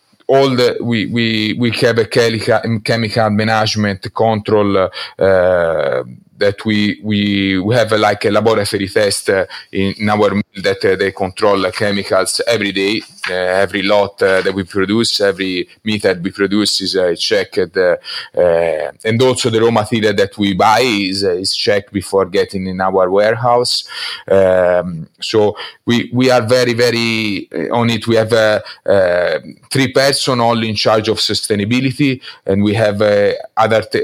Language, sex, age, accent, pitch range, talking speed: English, male, 30-49, Italian, 100-120 Hz, 165 wpm